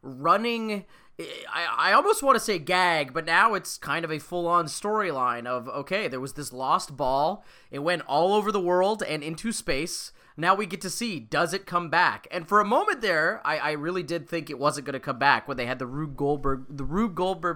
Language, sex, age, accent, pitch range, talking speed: English, male, 20-39, American, 135-185 Hz, 225 wpm